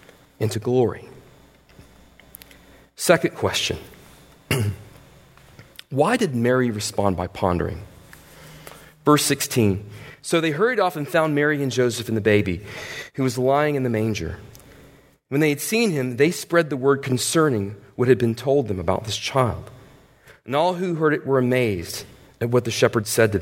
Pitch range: 100-140 Hz